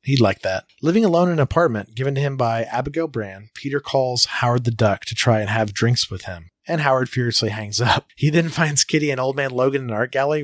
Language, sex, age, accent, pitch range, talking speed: English, male, 30-49, American, 110-140 Hz, 245 wpm